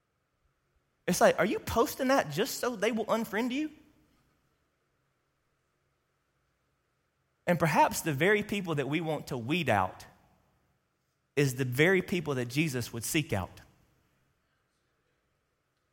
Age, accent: 30-49, American